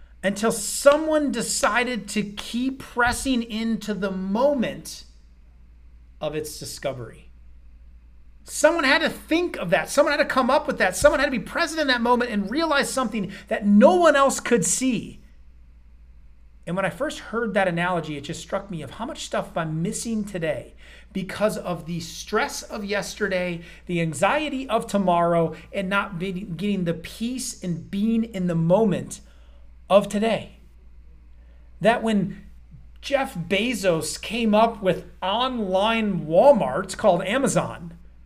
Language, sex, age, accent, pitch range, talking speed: English, male, 30-49, American, 170-265 Hz, 145 wpm